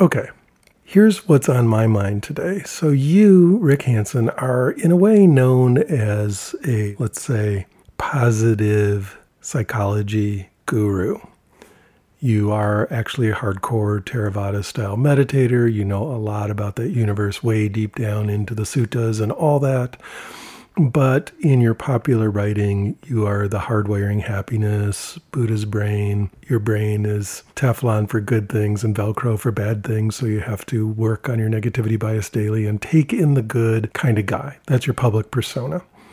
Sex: male